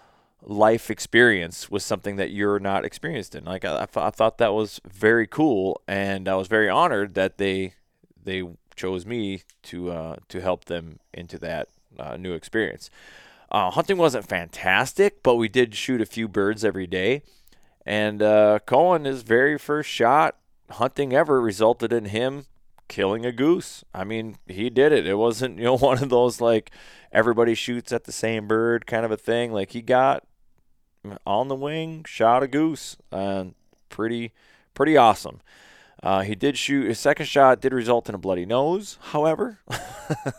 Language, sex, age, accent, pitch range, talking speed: English, male, 20-39, American, 100-130 Hz, 175 wpm